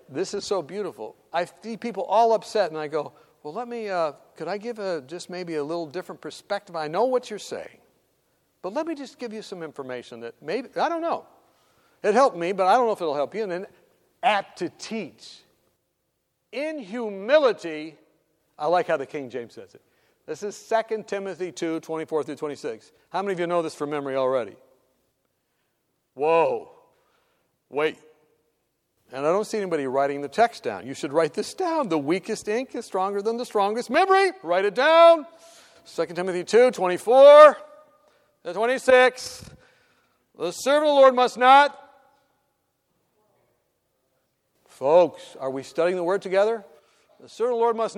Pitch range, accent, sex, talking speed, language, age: 165-270 Hz, American, male, 175 wpm, English, 60-79